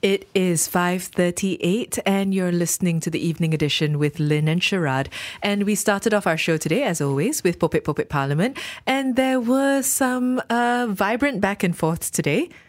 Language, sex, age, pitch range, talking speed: English, female, 20-39, 155-200 Hz, 170 wpm